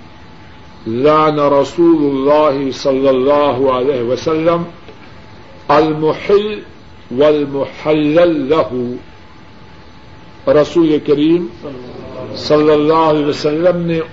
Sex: male